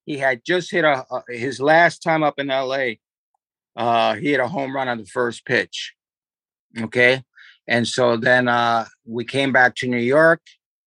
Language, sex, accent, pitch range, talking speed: English, male, American, 125-150 Hz, 180 wpm